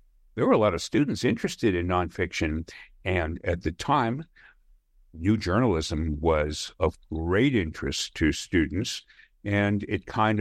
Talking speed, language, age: 140 wpm, English, 60-79